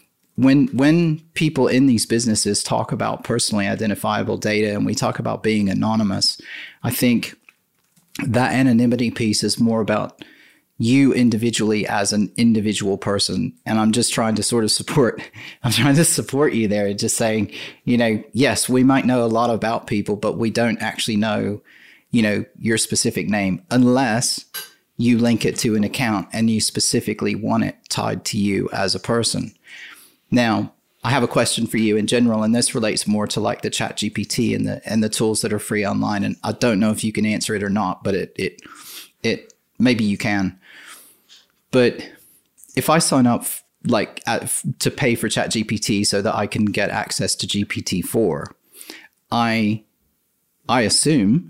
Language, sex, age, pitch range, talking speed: English, male, 30-49, 105-120 Hz, 175 wpm